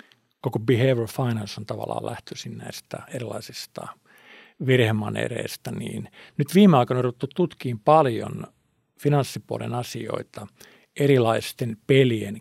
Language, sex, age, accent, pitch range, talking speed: Finnish, male, 50-69, native, 115-140 Hz, 100 wpm